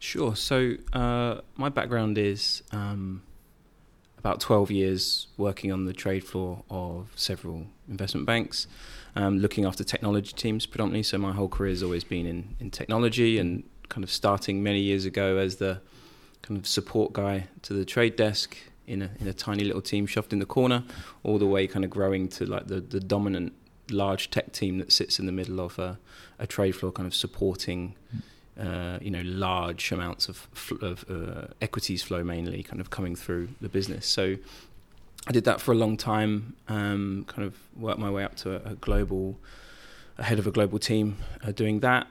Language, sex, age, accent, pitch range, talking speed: English, male, 20-39, British, 95-110 Hz, 190 wpm